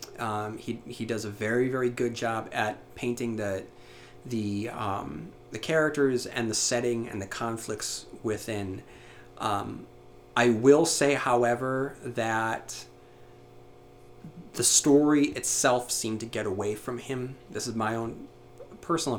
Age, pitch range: 30-49, 105-125 Hz